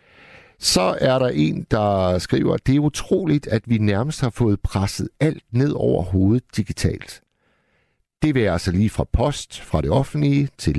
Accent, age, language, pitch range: native, 60-79, Danish, 90-125 Hz